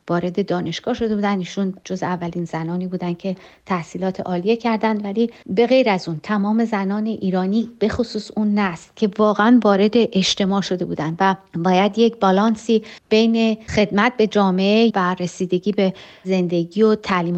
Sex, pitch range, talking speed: female, 180-215 Hz, 150 wpm